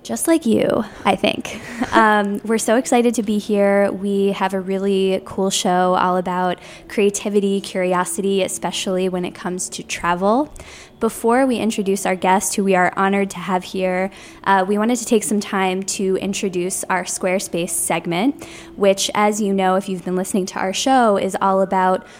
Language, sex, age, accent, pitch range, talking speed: English, female, 20-39, American, 185-210 Hz, 180 wpm